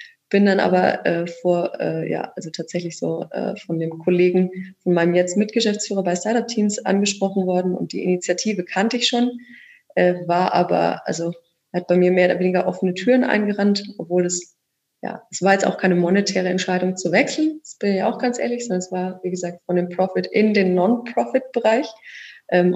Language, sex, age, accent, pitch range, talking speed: German, female, 20-39, German, 175-205 Hz, 190 wpm